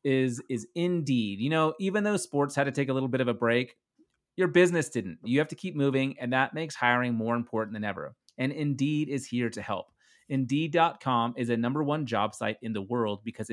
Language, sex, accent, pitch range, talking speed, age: English, male, American, 115-145 Hz, 220 wpm, 30-49